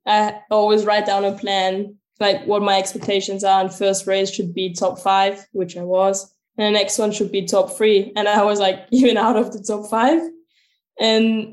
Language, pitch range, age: English, 195-225 Hz, 10-29